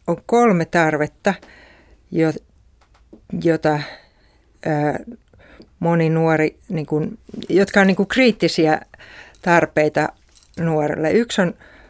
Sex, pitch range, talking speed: female, 150-185 Hz, 90 wpm